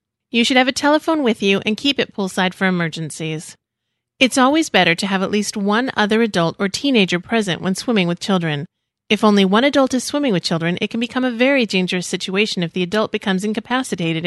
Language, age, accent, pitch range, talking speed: English, 30-49, American, 175-255 Hz, 210 wpm